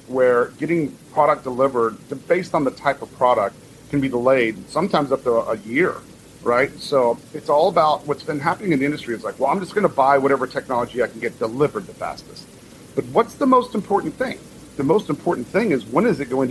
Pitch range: 115-145 Hz